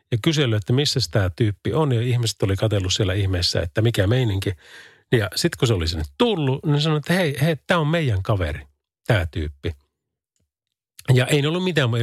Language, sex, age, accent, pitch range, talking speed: Finnish, male, 40-59, native, 100-145 Hz, 195 wpm